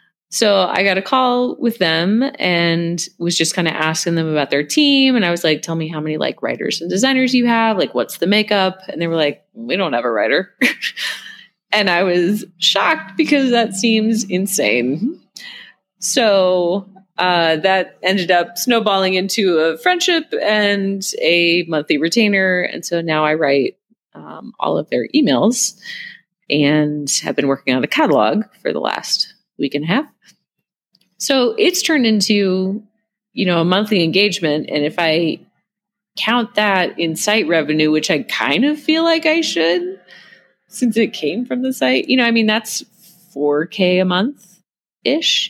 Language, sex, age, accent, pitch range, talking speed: English, female, 30-49, American, 160-220 Hz, 170 wpm